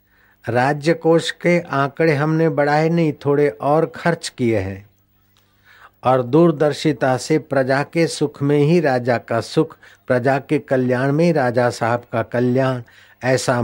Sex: male